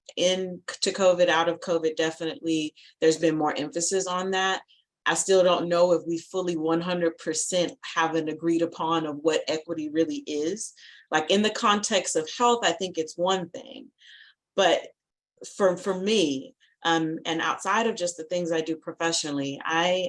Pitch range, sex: 155-175 Hz, female